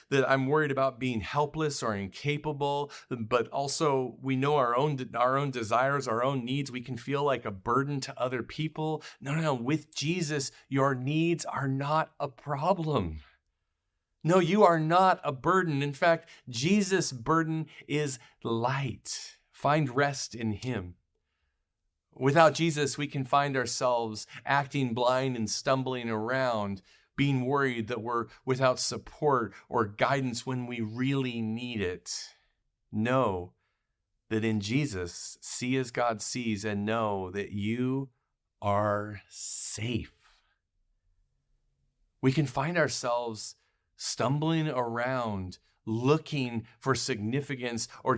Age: 40-59